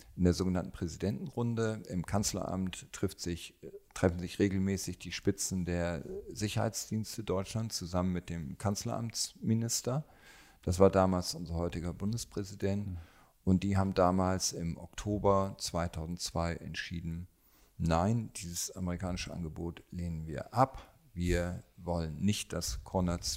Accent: German